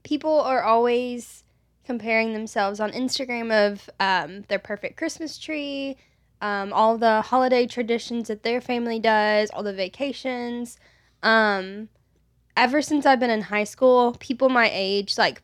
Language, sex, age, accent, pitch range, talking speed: English, female, 10-29, American, 195-240 Hz, 145 wpm